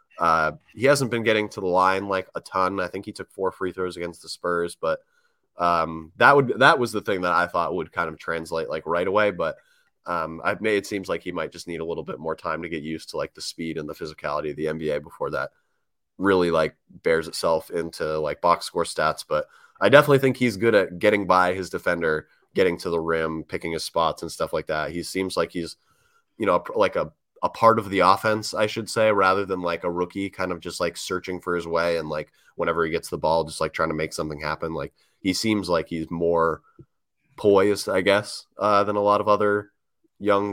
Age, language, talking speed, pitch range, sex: 20-39, English, 235 wpm, 85-105 Hz, male